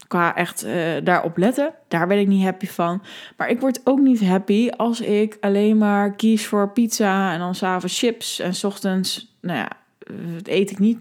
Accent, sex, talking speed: Dutch, female, 200 wpm